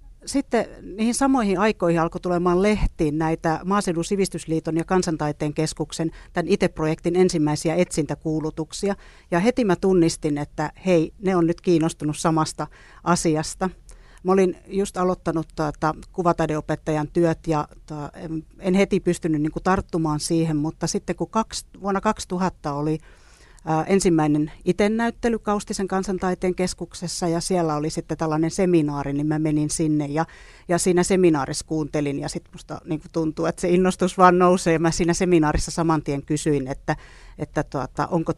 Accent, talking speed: native, 145 wpm